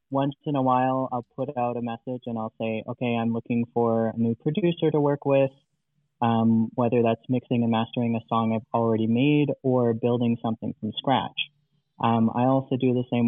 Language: English